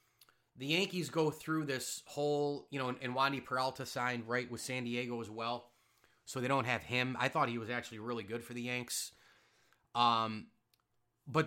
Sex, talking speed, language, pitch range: male, 190 wpm, English, 115-145 Hz